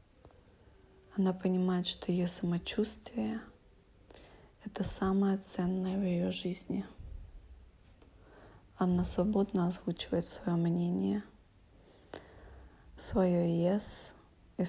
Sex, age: female, 20-39